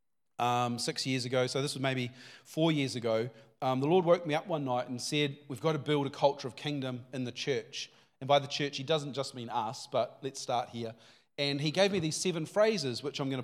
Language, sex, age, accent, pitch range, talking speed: English, male, 40-59, Australian, 135-165 Hz, 245 wpm